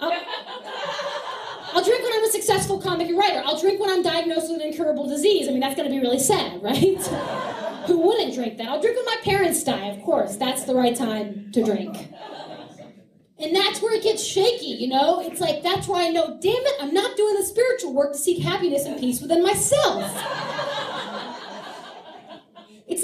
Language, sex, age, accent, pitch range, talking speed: English, female, 30-49, American, 235-345 Hz, 195 wpm